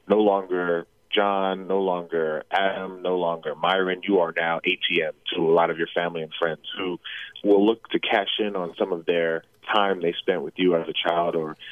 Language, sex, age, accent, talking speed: English, male, 30-49, American, 205 wpm